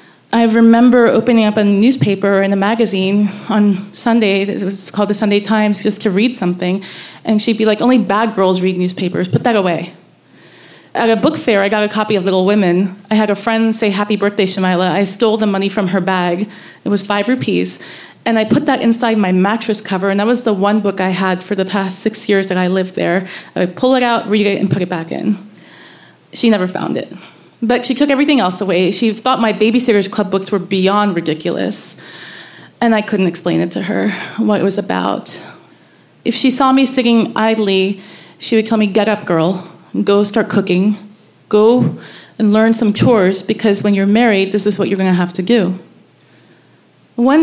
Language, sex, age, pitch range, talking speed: English, female, 20-39, 195-240 Hz, 210 wpm